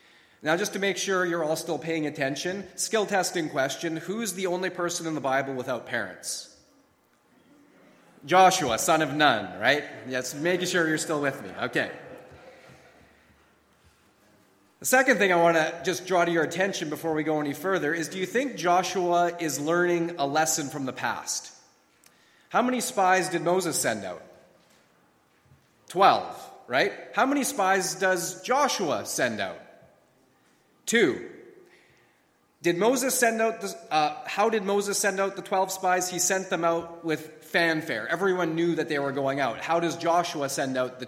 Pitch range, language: 155-195 Hz, English